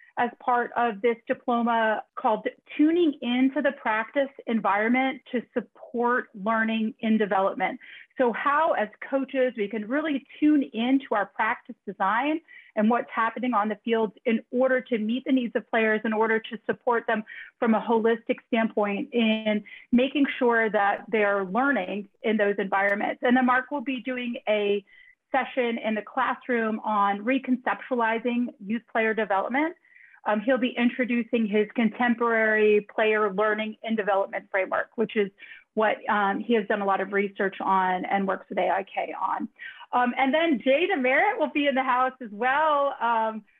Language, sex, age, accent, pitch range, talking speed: English, female, 30-49, American, 220-265 Hz, 160 wpm